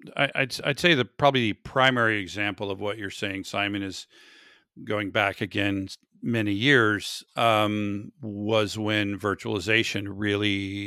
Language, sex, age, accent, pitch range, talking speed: English, male, 50-69, American, 100-120 Hz, 135 wpm